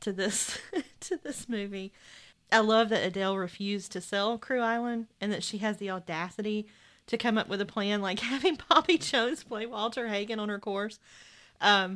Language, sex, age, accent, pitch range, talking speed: English, female, 40-59, American, 185-220 Hz, 185 wpm